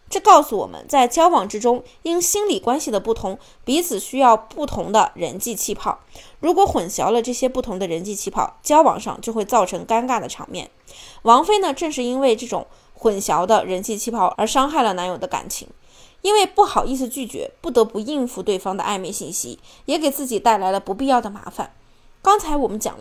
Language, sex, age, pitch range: Chinese, female, 20-39, 215-285 Hz